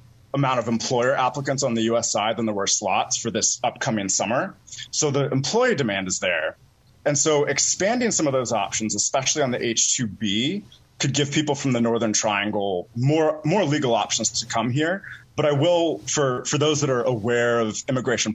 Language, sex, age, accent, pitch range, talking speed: English, male, 30-49, American, 110-140 Hz, 190 wpm